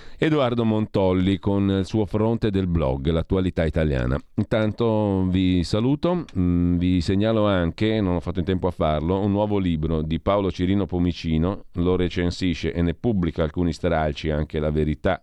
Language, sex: Italian, male